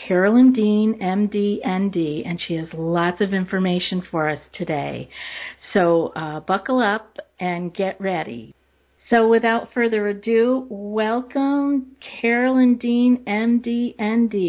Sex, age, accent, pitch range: female, 50-69, American, 180-230 Hz